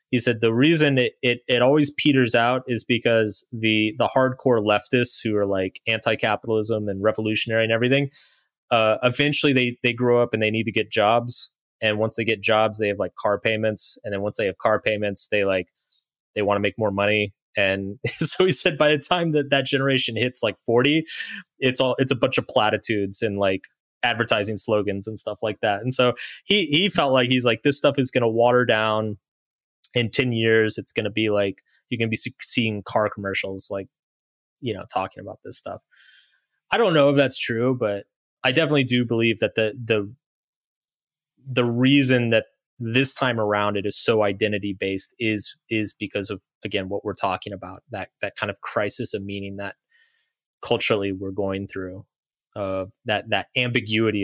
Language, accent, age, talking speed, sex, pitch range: English, American, 20-39, 195 wpm, male, 105-125 Hz